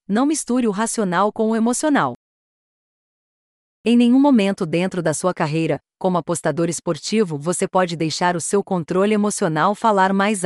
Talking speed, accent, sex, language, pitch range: 150 wpm, Brazilian, female, Portuguese, 180-225 Hz